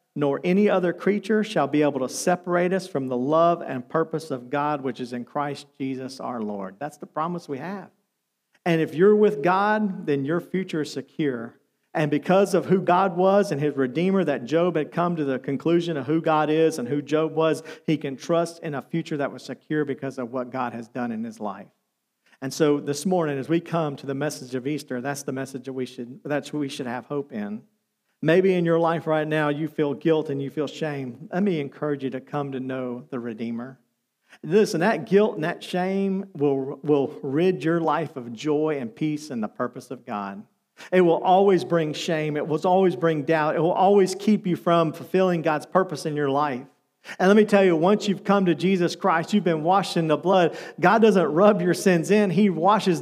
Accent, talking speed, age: American, 220 wpm, 50-69